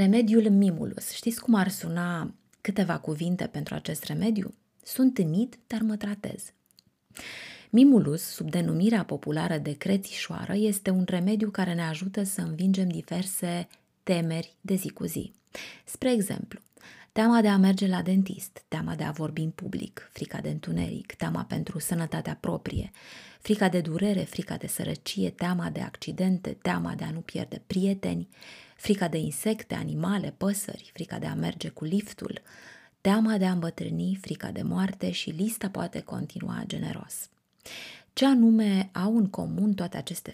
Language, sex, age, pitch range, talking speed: Romanian, female, 20-39, 175-210 Hz, 150 wpm